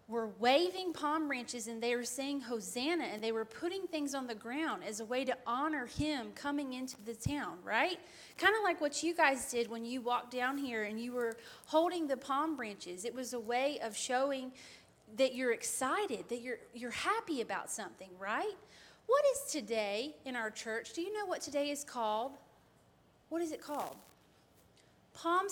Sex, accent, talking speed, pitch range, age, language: female, American, 190 wpm, 235-315 Hz, 30-49, English